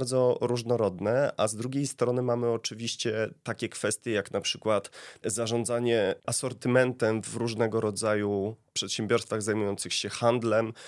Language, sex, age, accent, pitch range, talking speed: Polish, male, 30-49, native, 105-120 Hz, 120 wpm